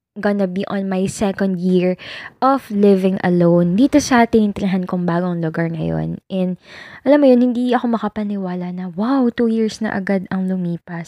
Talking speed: 180 wpm